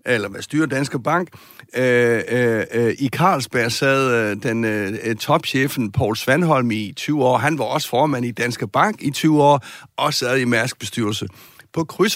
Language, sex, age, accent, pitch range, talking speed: Danish, male, 60-79, native, 115-150 Hz, 155 wpm